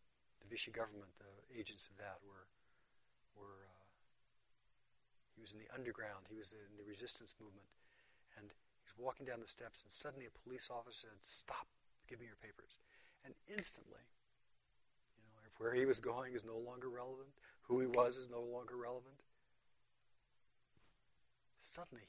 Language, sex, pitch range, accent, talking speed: English, male, 110-130 Hz, American, 160 wpm